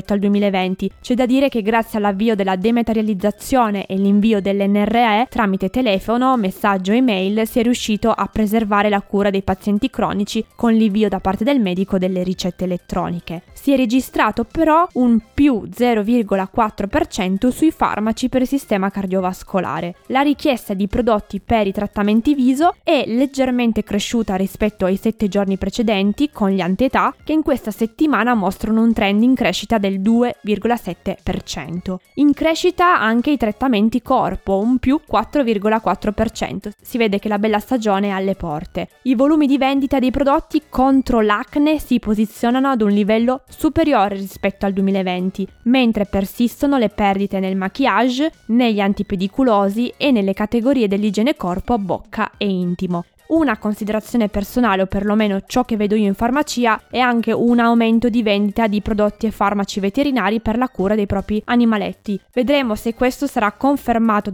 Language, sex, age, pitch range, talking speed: Italian, female, 20-39, 200-245 Hz, 150 wpm